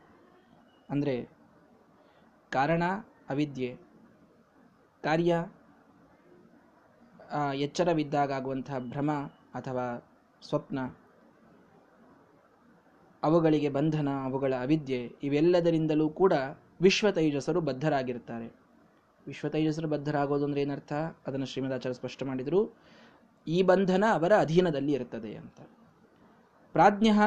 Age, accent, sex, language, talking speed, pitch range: 20-39, native, male, Kannada, 65 wpm, 140-195 Hz